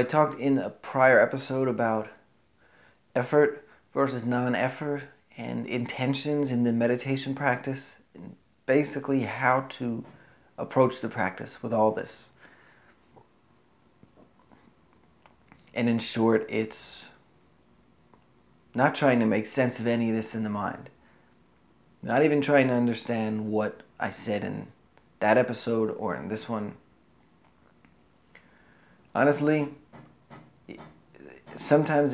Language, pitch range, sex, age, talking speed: English, 100-130 Hz, male, 30-49, 110 wpm